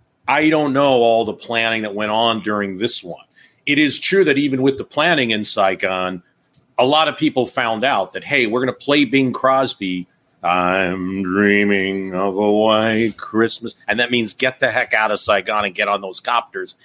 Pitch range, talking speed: 95-115 Hz, 200 wpm